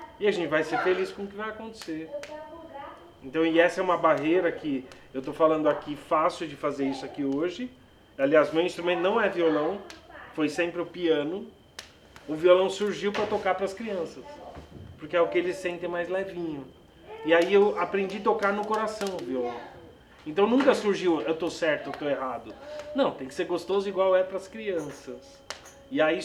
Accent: Brazilian